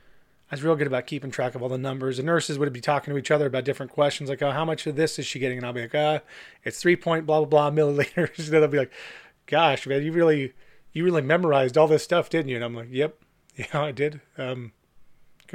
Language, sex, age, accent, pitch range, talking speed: English, male, 30-49, American, 135-160 Hz, 265 wpm